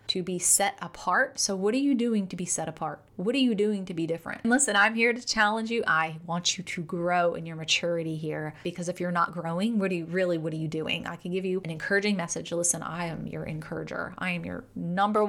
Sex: female